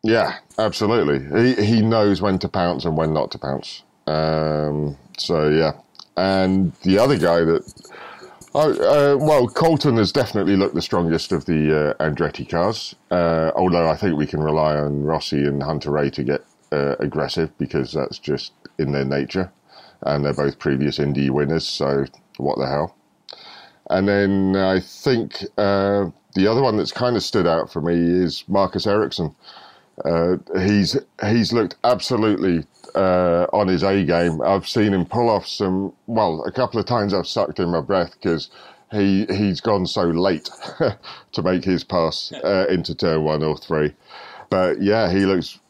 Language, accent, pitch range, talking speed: English, British, 75-95 Hz, 170 wpm